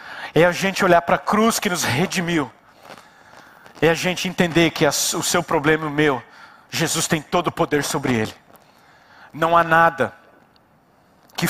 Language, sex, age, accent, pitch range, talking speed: Portuguese, male, 40-59, Brazilian, 150-180 Hz, 165 wpm